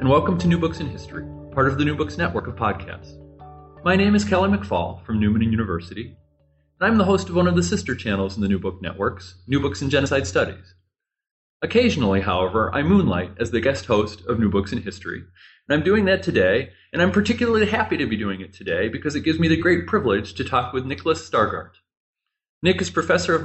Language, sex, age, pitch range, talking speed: English, male, 40-59, 100-170 Hz, 220 wpm